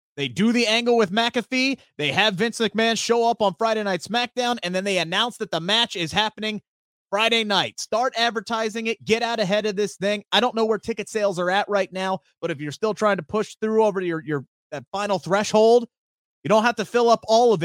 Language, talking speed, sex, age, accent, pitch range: English, 230 wpm, male, 30-49, American, 180-225 Hz